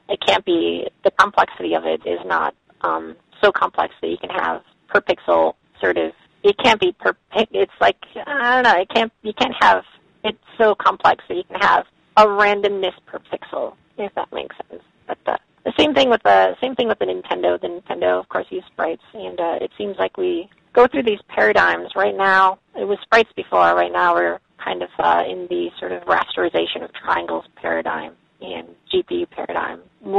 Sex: female